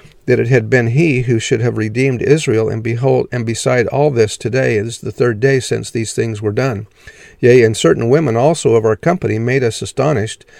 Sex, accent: male, American